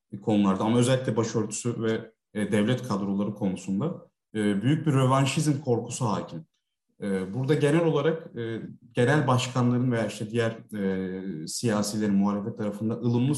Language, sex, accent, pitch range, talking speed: Turkish, male, native, 105-135 Hz, 135 wpm